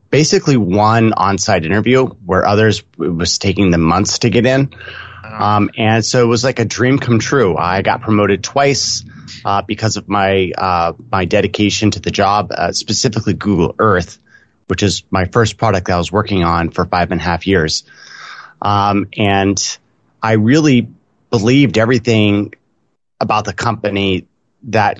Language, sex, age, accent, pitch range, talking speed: English, male, 30-49, American, 95-115 Hz, 165 wpm